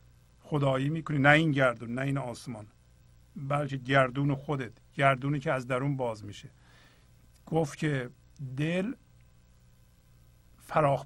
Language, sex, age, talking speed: Persian, male, 50-69, 115 wpm